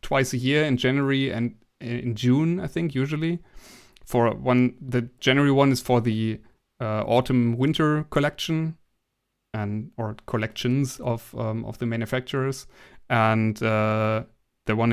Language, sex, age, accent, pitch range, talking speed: English, male, 30-49, German, 115-135 Hz, 140 wpm